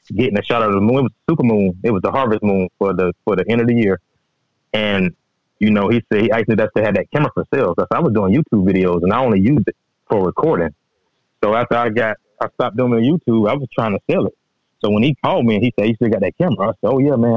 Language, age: English, 20-39